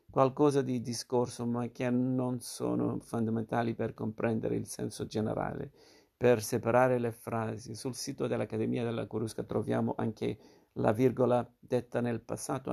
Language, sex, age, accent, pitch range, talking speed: Italian, male, 50-69, native, 110-125 Hz, 135 wpm